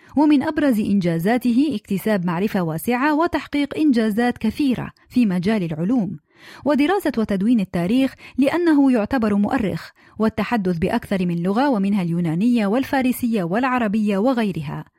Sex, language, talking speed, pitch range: female, Arabic, 110 wpm, 185-260 Hz